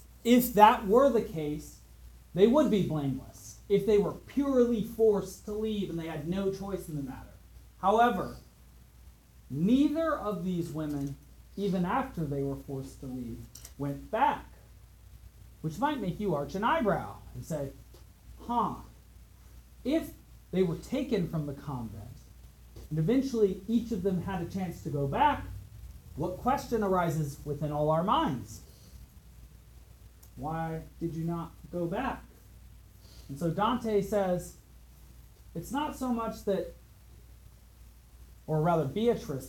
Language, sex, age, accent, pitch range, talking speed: English, male, 40-59, American, 130-195 Hz, 140 wpm